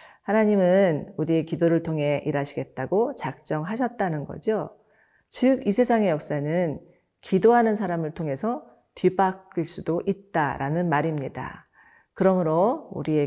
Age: 40-59